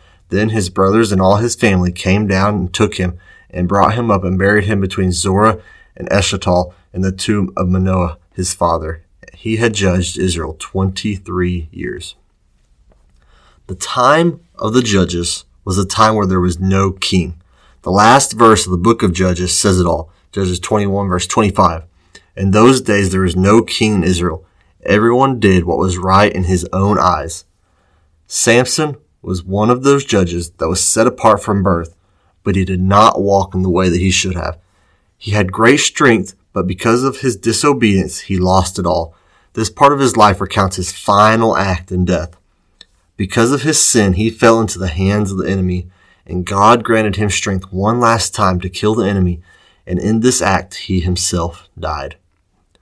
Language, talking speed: English, 185 wpm